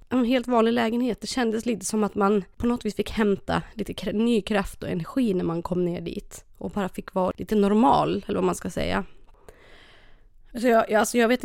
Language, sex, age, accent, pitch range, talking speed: English, female, 20-39, Swedish, 195-225 Hz, 215 wpm